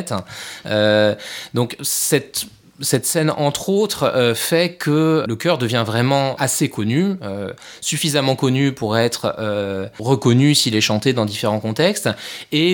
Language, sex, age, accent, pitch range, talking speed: English, male, 20-39, French, 110-140 Hz, 135 wpm